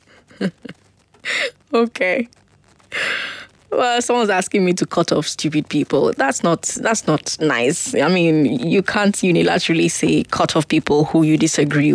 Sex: female